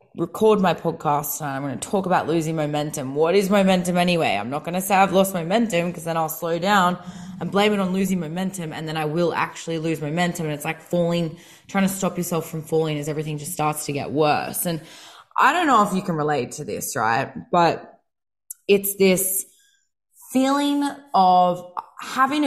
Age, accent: 20-39, Australian